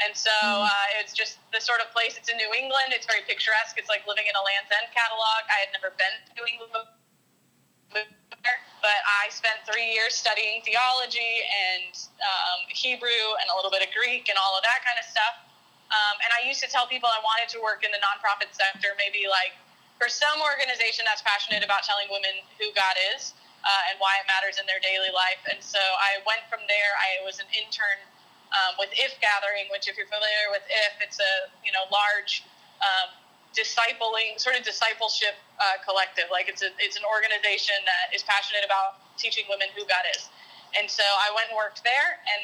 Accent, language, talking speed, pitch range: American, English, 205 wpm, 195-230 Hz